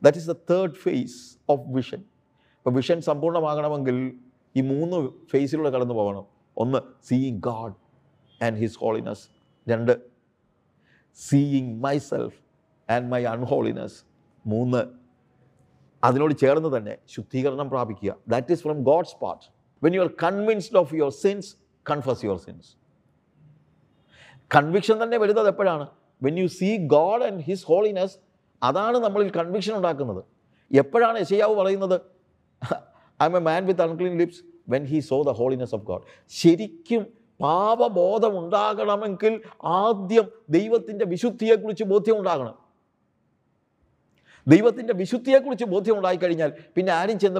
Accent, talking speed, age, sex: native, 120 wpm, 50-69, male